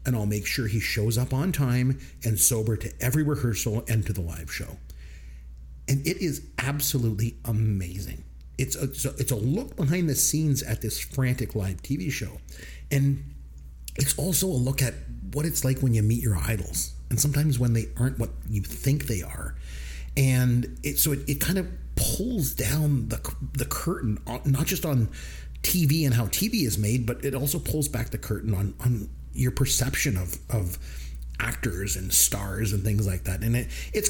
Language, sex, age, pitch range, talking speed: English, male, 40-59, 95-135 Hz, 190 wpm